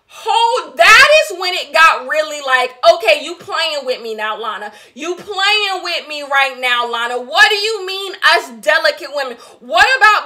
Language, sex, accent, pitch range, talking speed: English, female, American, 290-380 Hz, 180 wpm